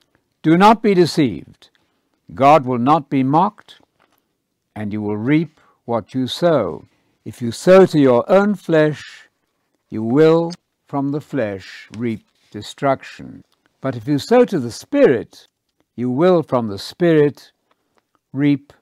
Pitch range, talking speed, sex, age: 110-155 Hz, 135 wpm, male, 60-79